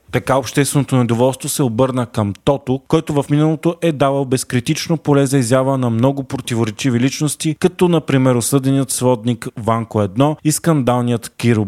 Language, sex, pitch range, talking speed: Bulgarian, male, 120-145 Hz, 150 wpm